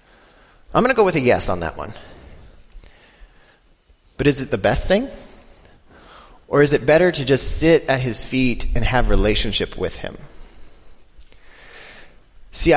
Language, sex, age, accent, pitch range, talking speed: English, male, 30-49, American, 120-180 Hz, 150 wpm